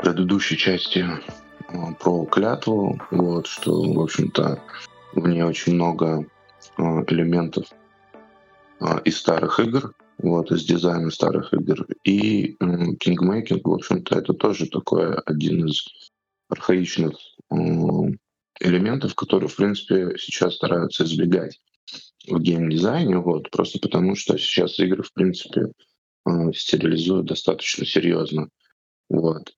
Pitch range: 80-95 Hz